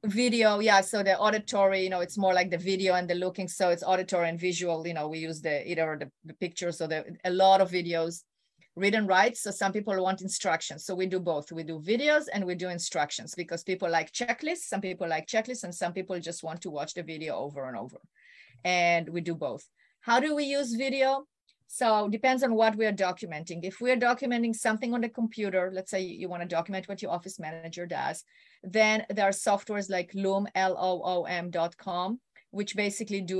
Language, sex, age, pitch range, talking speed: English, female, 30-49, 175-210 Hz, 215 wpm